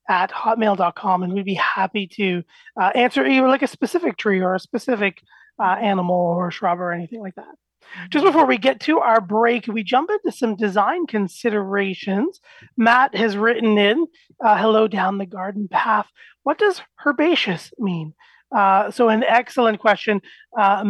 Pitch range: 195-245 Hz